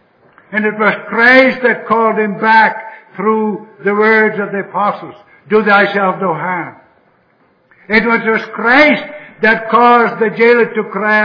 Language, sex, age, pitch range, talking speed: English, male, 60-79, 200-230 Hz, 145 wpm